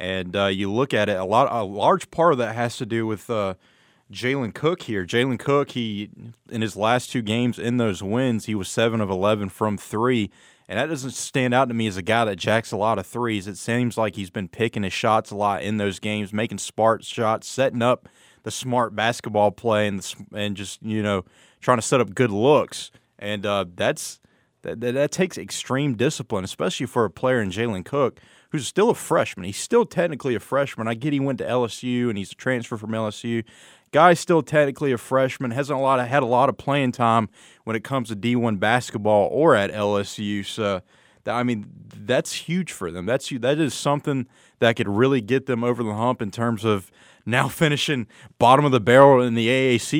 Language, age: English, 30-49